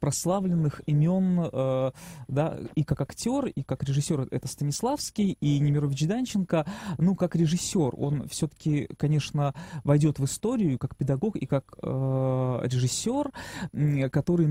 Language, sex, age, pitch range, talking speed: Russian, male, 20-39, 135-170 Hz, 120 wpm